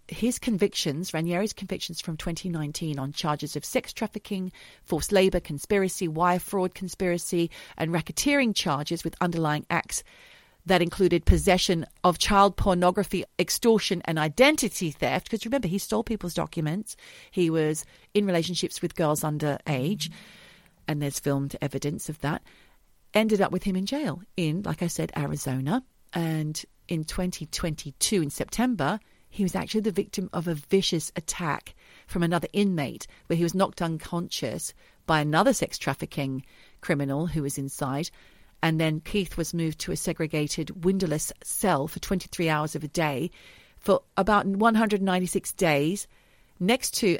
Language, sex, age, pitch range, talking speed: English, female, 40-59, 155-195 Hz, 145 wpm